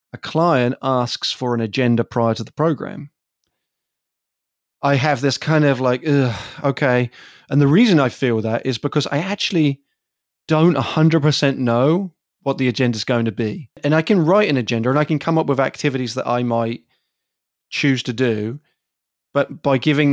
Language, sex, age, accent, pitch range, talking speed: English, male, 30-49, British, 120-145 Hz, 180 wpm